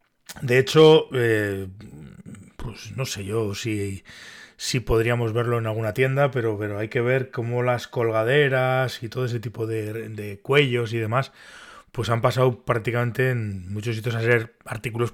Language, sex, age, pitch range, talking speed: Spanish, male, 30-49, 110-135 Hz, 165 wpm